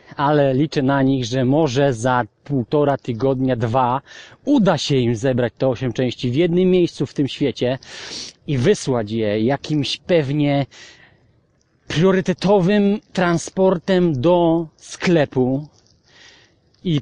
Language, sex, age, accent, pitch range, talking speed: English, male, 40-59, Polish, 125-155 Hz, 115 wpm